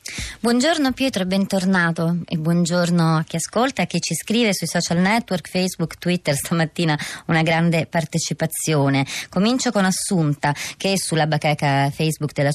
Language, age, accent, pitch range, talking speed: Italian, 30-49, native, 155-190 Hz, 150 wpm